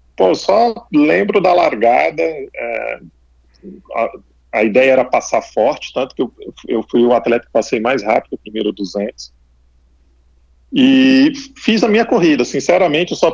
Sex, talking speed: male, 155 wpm